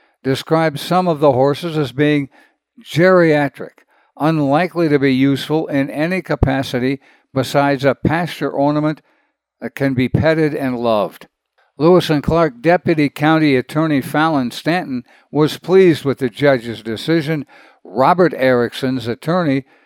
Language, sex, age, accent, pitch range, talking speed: English, male, 60-79, American, 135-165 Hz, 125 wpm